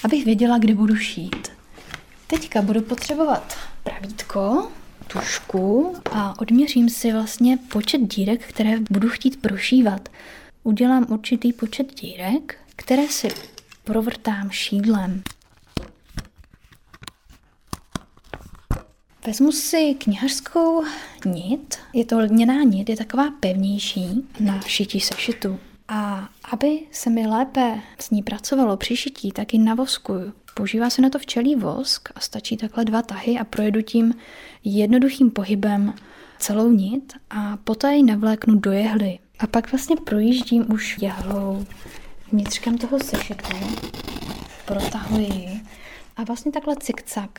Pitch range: 210-250 Hz